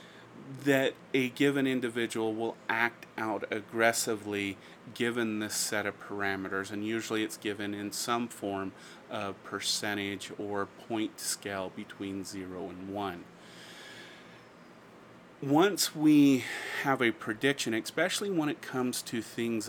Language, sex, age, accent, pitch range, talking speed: English, male, 30-49, American, 100-125 Hz, 120 wpm